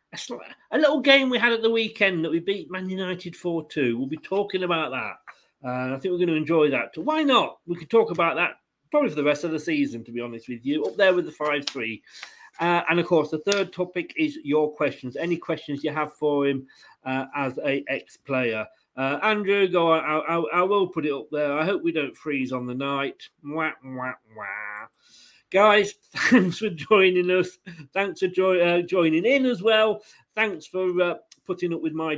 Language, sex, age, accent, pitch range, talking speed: English, male, 40-59, British, 150-200 Hz, 215 wpm